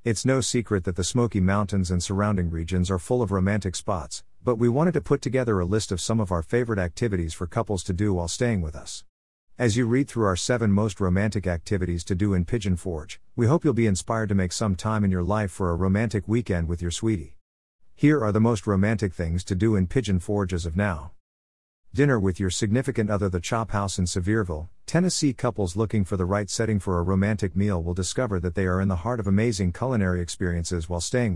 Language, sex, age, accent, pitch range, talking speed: English, male, 50-69, American, 90-115 Hz, 230 wpm